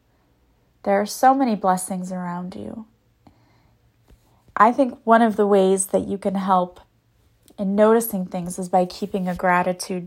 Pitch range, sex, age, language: 180-220 Hz, female, 30-49, English